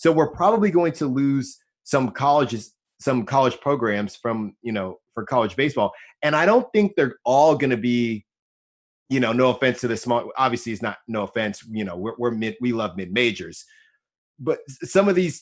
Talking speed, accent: 200 wpm, American